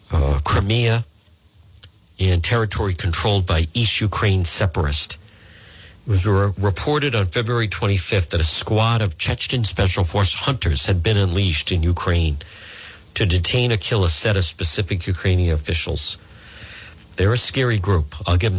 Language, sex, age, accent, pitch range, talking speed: English, male, 50-69, American, 90-115 Hz, 145 wpm